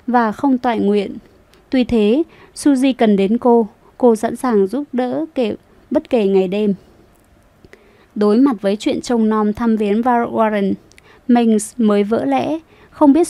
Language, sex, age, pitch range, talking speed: Vietnamese, female, 20-39, 210-250 Hz, 160 wpm